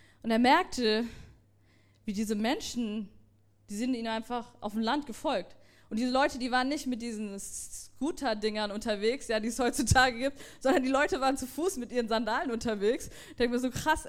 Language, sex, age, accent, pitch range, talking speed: German, female, 20-39, German, 230-315 Hz, 185 wpm